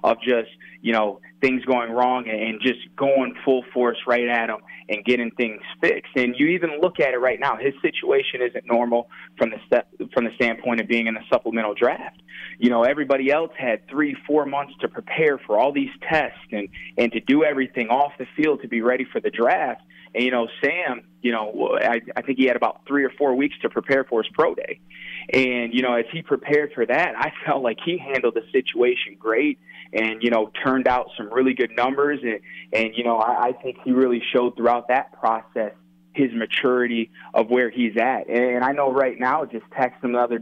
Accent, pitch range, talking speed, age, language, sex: American, 115-140 Hz, 220 wpm, 20-39, English, male